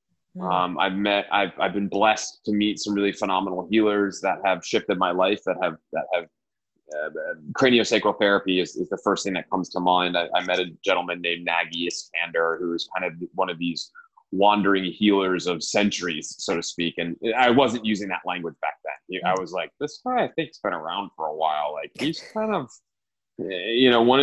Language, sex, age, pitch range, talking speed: English, male, 20-39, 85-110 Hz, 210 wpm